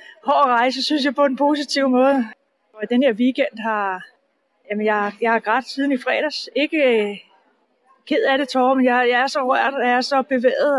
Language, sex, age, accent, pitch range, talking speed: Danish, female, 30-49, native, 235-275 Hz, 205 wpm